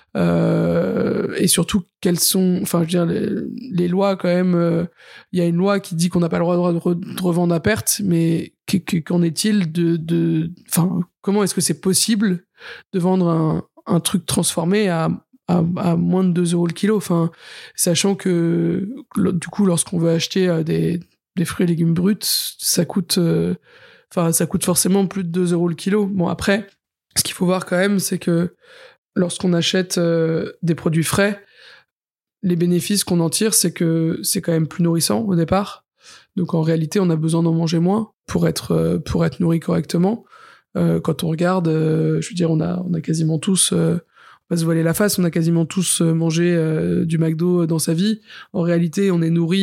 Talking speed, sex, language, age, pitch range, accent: 200 wpm, male, French, 20-39, 165-190 Hz, French